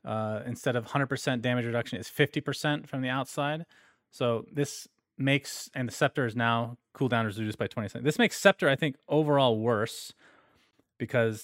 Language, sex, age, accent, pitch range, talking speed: English, male, 30-49, American, 115-165 Hz, 170 wpm